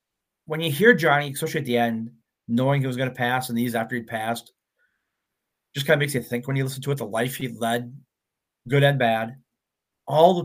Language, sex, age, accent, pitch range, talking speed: English, male, 30-49, American, 115-140 Hz, 225 wpm